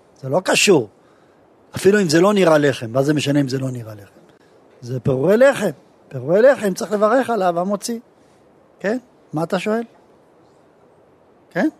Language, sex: Hebrew, male